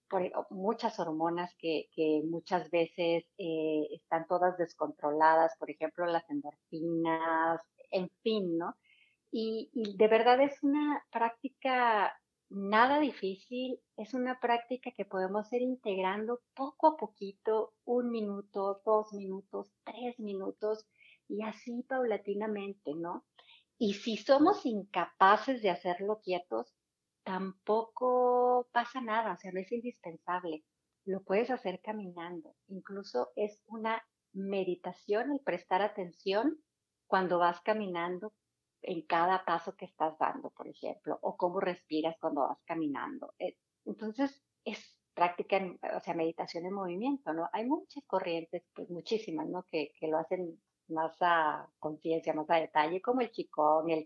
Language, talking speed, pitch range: Spanish, 130 wpm, 170-225 Hz